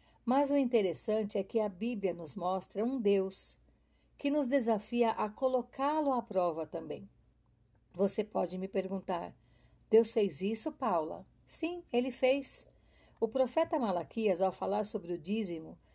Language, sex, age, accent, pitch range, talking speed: Portuguese, female, 50-69, Brazilian, 180-235 Hz, 145 wpm